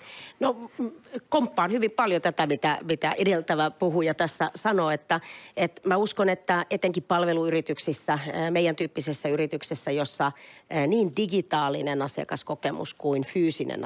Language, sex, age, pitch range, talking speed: Finnish, female, 40-59, 150-175 Hz, 115 wpm